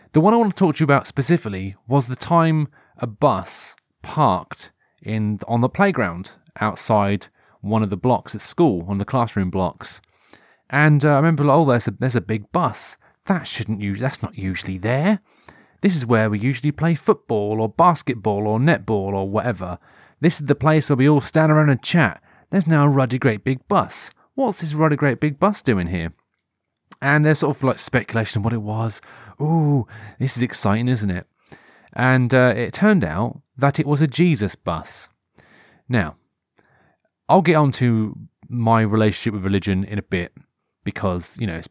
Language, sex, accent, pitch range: English, male, British, 105-145 Hz